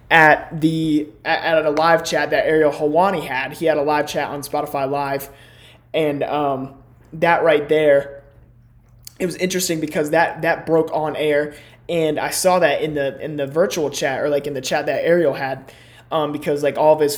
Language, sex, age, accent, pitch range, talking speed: English, male, 20-39, American, 140-165 Hz, 195 wpm